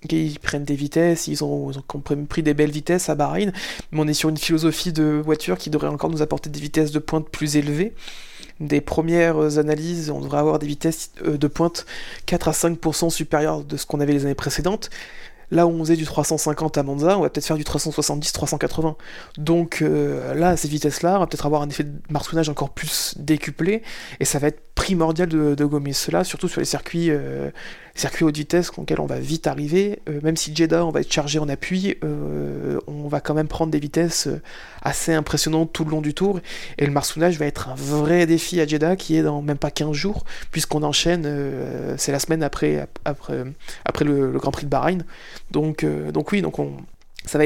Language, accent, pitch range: French, French, 145-165 Hz